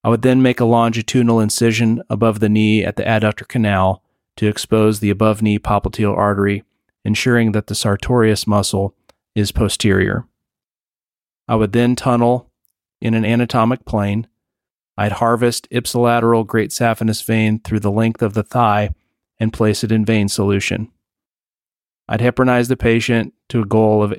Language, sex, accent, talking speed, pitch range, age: English, male, American, 155 wpm, 105-120 Hz, 30-49